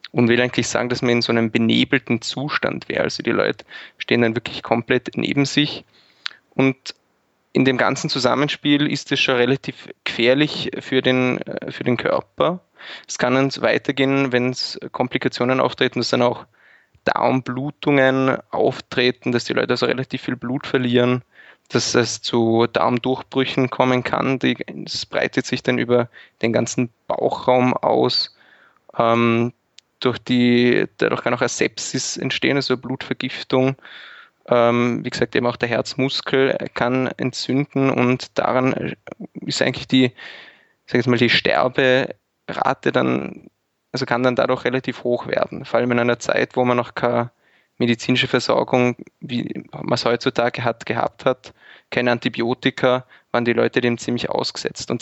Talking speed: 150 wpm